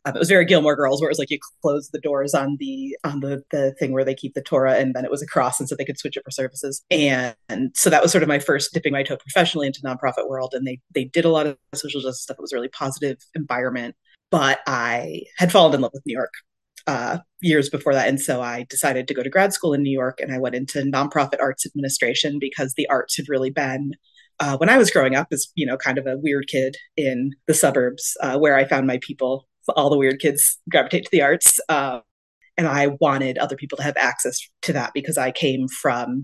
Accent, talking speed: American, 255 wpm